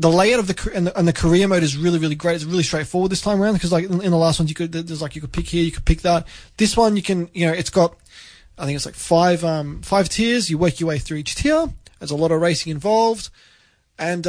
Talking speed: 275 wpm